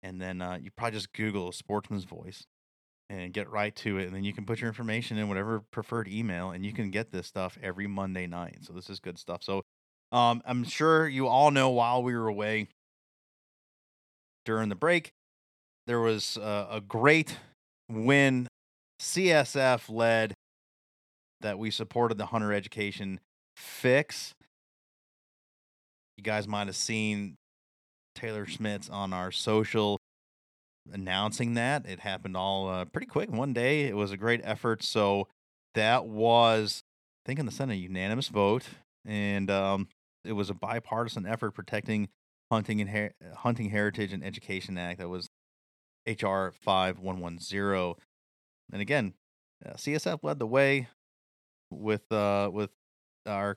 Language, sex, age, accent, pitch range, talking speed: English, male, 30-49, American, 95-115 Hz, 155 wpm